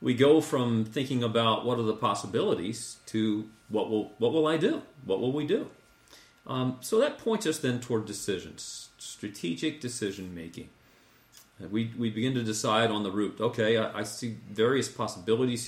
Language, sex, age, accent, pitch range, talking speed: English, male, 40-59, American, 100-125 Hz, 170 wpm